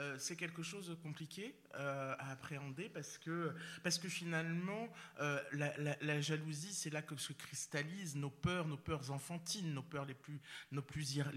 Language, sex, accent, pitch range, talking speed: French, male, French, 150-195 Hz, 185 wpm